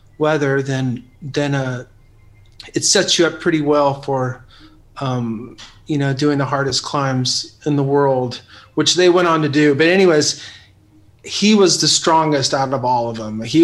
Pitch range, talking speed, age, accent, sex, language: 125-155 Hz, 170 wpm, 30-49, American, male, English